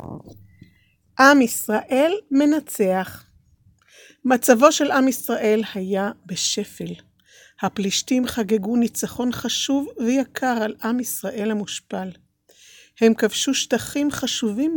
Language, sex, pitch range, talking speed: Hebrew, female, 195-270 Hz, 90 wpm